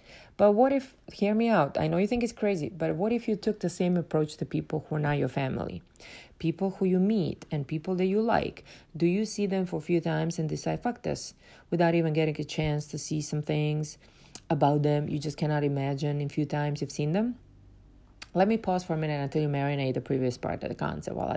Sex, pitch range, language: female, 150-180 Hz, English